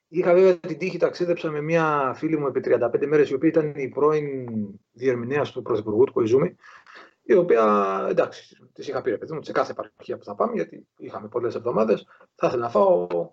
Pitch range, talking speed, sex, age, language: 140-200 Hz, 200 wpm, male, 30-49, Greek